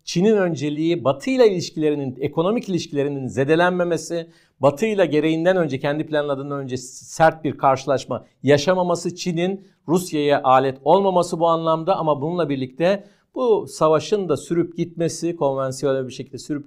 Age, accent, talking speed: 50-69, native, 135 wpm